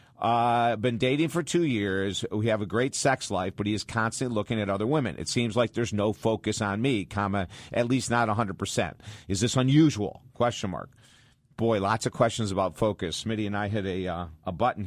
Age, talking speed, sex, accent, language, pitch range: 50-69, 215 wpm, male, American, English, 105-130 Hz